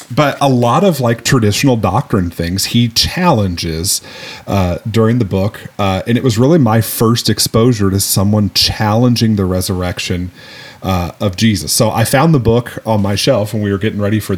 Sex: male